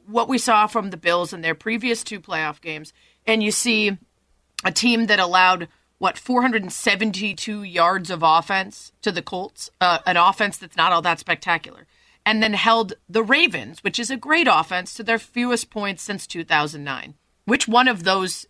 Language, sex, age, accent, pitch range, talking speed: English, female, 30-49, American, 185-240 Hz, 180 wpm